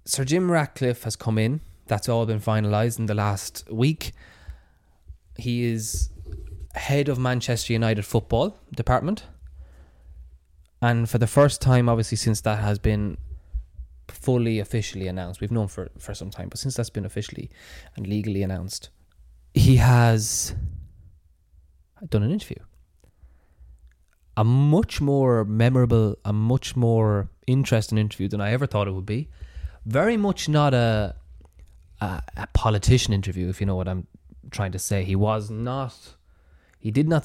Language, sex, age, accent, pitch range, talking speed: English, male, 20-39, Irish, 80-115 Hz, 150 wpm